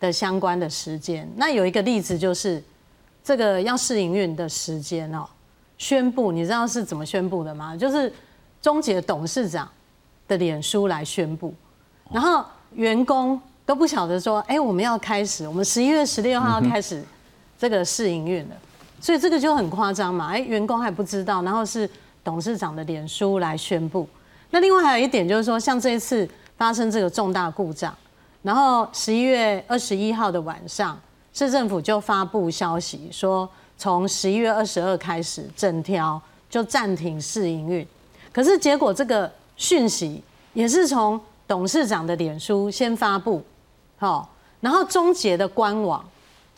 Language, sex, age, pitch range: Chinese, female, 30-49, 180-240 Hz